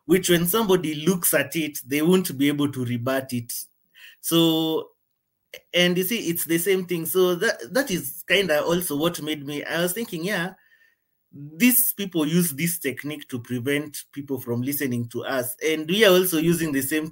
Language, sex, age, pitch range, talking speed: English, male, 30-49, 130-170 Hz, 190 wpm